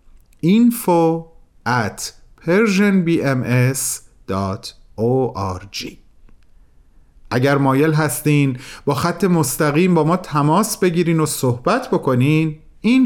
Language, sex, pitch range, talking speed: Persian, male, 120-185 Hz, 85 wpm